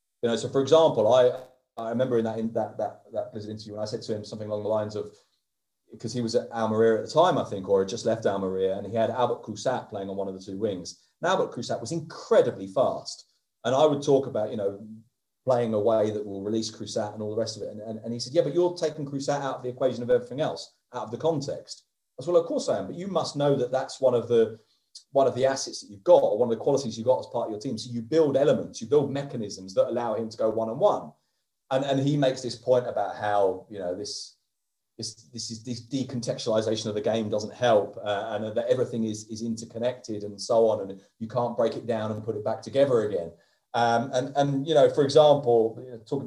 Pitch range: 110-140 Hz